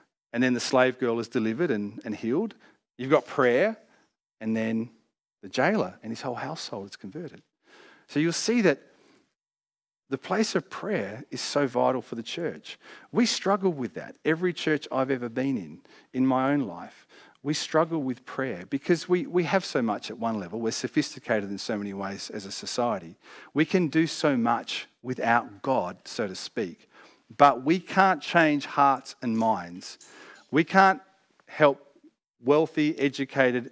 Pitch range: 130-170 Hz